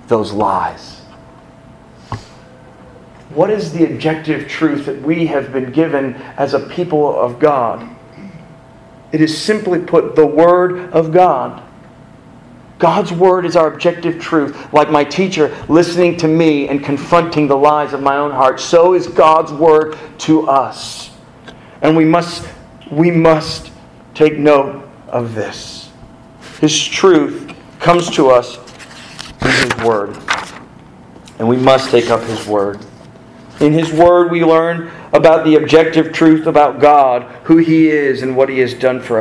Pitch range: 140-170 Hz